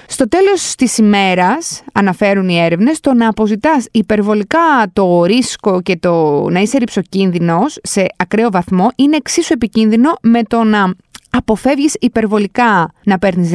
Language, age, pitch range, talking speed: Greek, 20-39, 205-275 Hz, 135 wpm